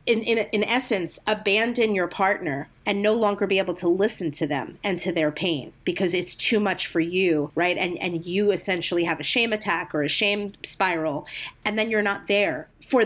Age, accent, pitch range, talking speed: 40-59, American, 170-210 Hz, 205 wpm